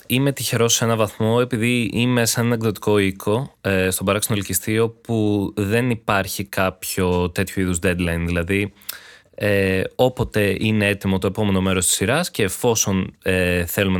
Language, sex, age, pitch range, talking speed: Greek, male, 20-39, 95-120 Hz, 150 wpm